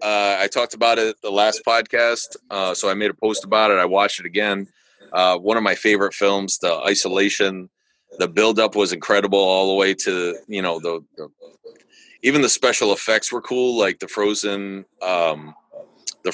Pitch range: 100-120 Hz